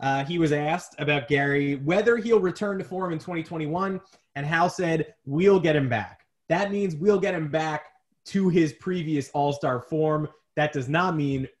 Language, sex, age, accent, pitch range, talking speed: English, male, 20-39, American, 130-160 Hz, 180 wpm